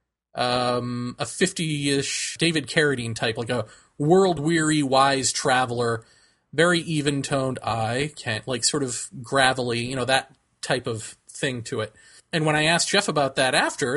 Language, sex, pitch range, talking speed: English, male, 120-160 Hz, 155 wpm